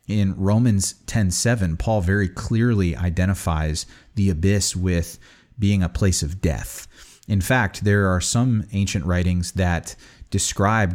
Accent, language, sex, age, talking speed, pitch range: American, English, male, 30-49, 135 wpm, 85-105 Hz